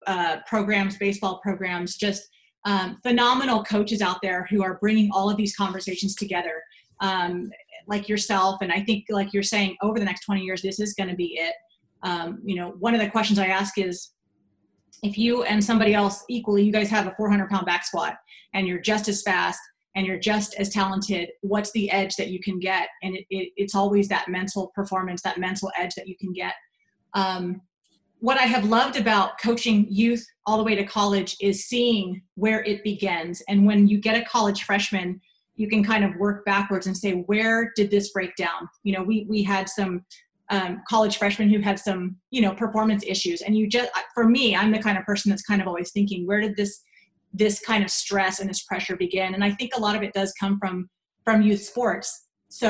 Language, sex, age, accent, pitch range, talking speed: English, female, 30-49, American, 190-215 Hz, 210 wpm